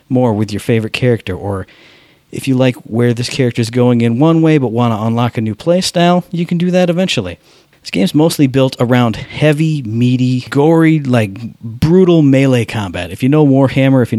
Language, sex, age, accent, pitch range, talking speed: English, male, 40-59, American, 120-150 Hz, 200 wpm